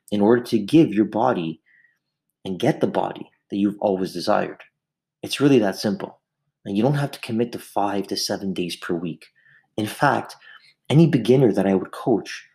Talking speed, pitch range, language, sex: 185 wpm, 105-130 Hz, English, male